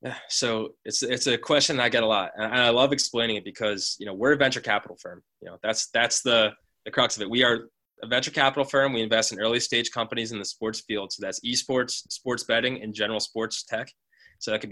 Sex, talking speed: male, 240 wpm